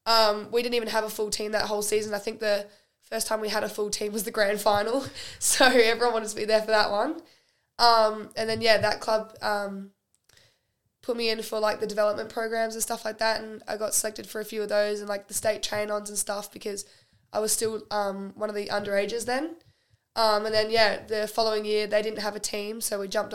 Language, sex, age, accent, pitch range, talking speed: English, female, 10-29, Australian, 205-225 Hz, 240 wpm